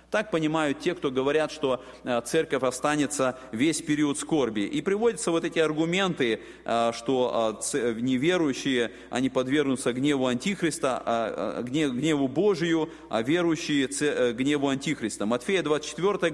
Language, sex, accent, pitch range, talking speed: Russian, male, native, 130-175 Hz, 110 wpm